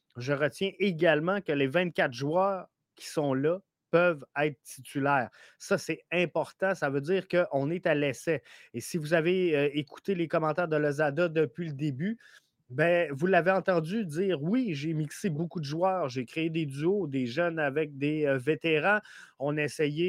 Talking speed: 180 wpm